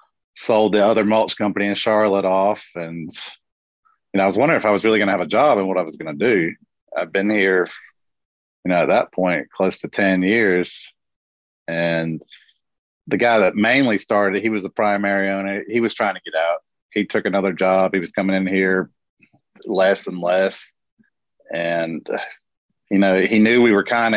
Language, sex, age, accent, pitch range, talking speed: English, male, 30-49, American, 95-105 Hz, 200 wpm